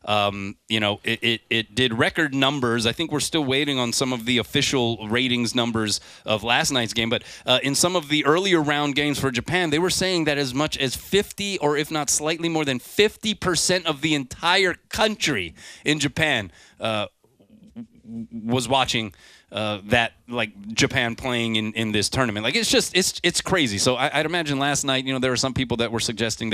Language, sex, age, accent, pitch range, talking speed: English, male, 30-49, American, 105-140 Hz, 205 wpm